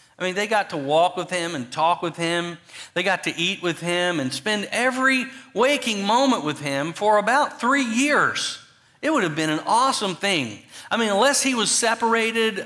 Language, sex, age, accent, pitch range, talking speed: English, male, 50-69, American, 150-225 Hz, 200 wpm